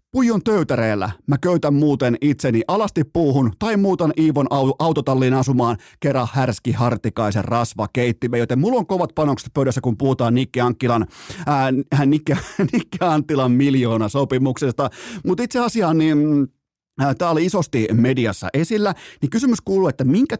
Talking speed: 135 wpm